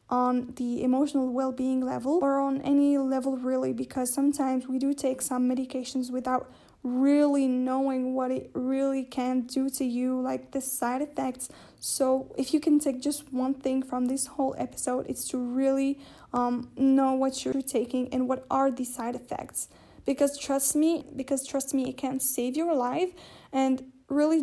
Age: 10-29